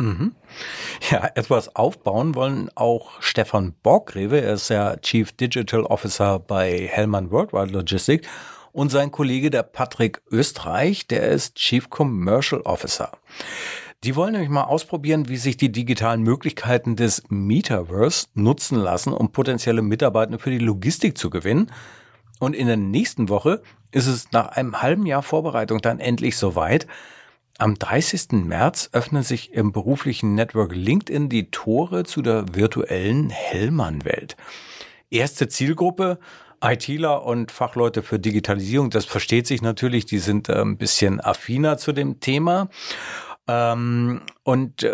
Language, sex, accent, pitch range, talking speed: German, male, German, 110-140 Hz, 135 wpm